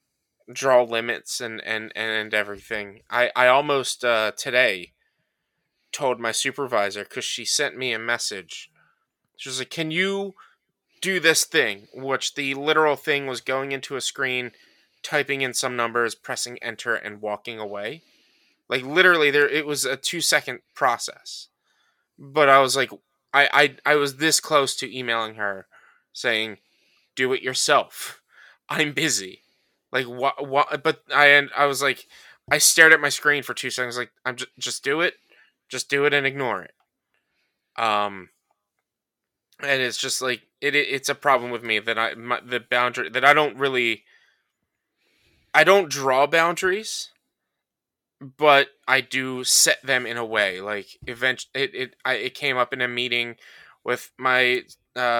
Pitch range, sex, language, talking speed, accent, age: 120-140 Hz, male, English, 165 wpm, American, 20-39